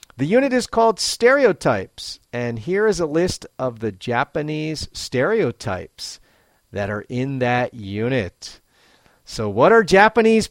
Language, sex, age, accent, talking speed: English, male, 40-59, American, 130 wpm